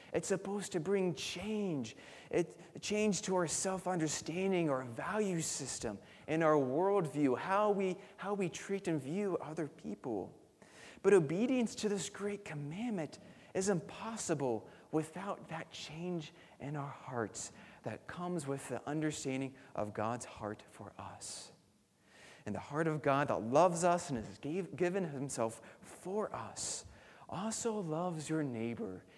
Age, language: 30-49, English